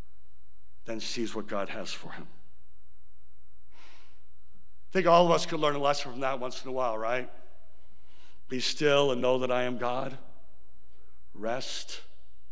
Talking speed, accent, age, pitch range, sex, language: 155 wpm, American, 60-79, 85-130 Hz, male, English